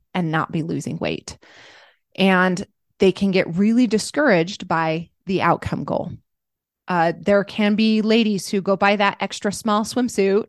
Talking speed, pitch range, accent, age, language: 155 wpm, 185-240 Hz, American, 20-39, English